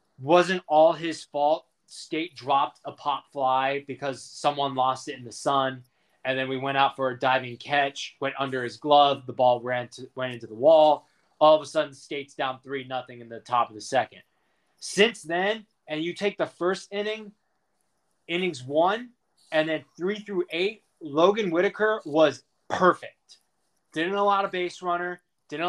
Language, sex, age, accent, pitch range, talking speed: English, male, 20-39, American, 130-165 Hz, 180 wpm